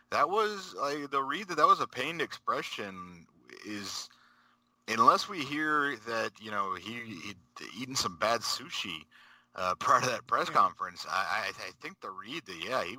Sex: male